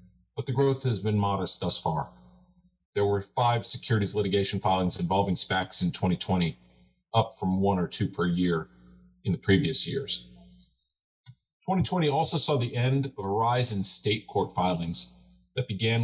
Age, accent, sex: 40-59, American, male